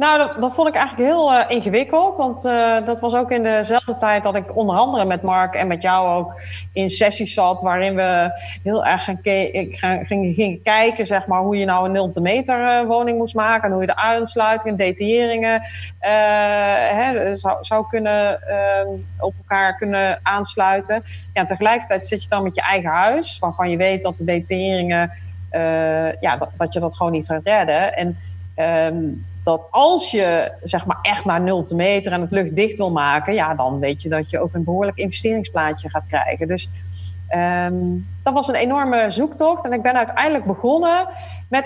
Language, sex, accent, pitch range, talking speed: Dutch, female, Dutch, 170-230 Hz, 185 wpm